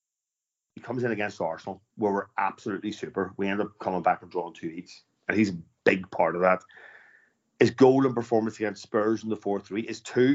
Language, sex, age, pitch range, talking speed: English, male, 40-59, 100-125 Hz, 210 wpm